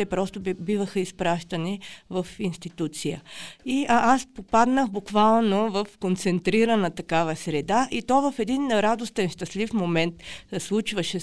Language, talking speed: Bulgarian, 120 wpm